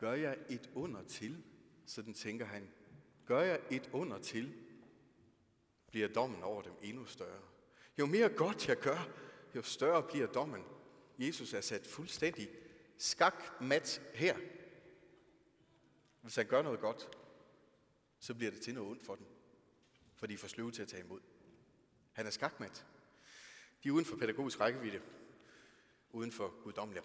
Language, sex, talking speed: Danish, male, 145 wpm